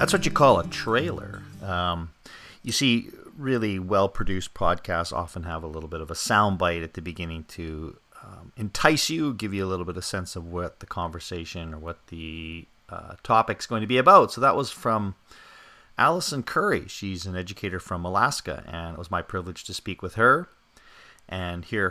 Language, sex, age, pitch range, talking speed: English, male, 40-59, 85-105 Hz, 190 wpm